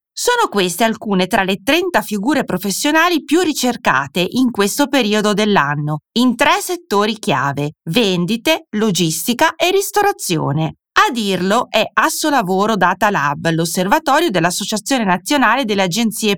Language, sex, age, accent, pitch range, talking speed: Italian, female, 30-49, native, 175-265 Hz, 125 wpm